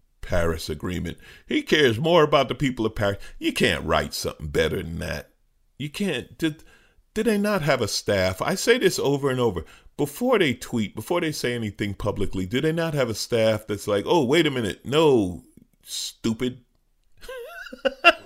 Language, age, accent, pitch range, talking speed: English, 40-59, American, 85-130 Hz, 175 wpm